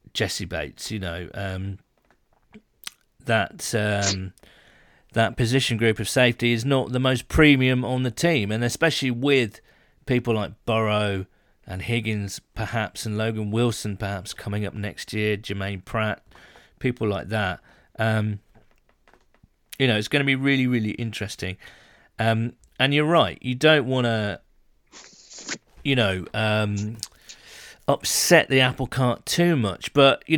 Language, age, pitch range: English, 40-59, 105-130 Hz